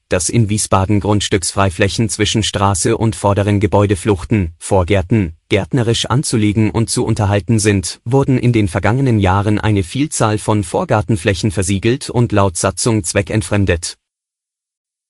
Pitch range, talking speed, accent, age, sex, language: 100-120 Hz, 120 wpm, German, 30-49, male, German